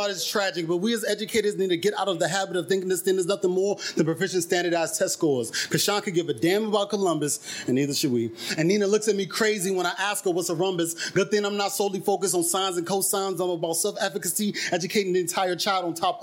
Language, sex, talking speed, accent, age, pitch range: English, male, 250 wpm, American, 30-49, 165-200 Hz